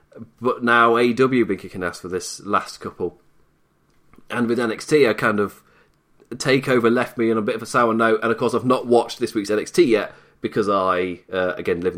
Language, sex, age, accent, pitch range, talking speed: English, male, 30-49, British, 110-135 Hz, 210 wpm